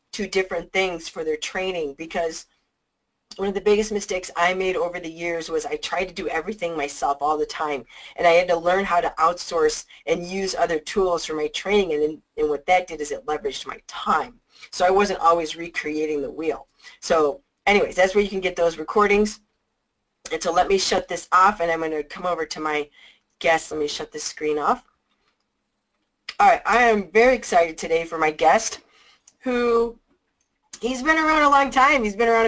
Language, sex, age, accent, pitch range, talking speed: English, female, 40-59, American, 175-230 Hz, 200 wpm